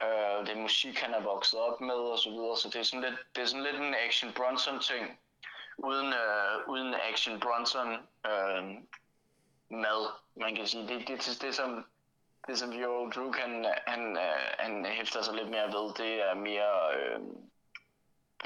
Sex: male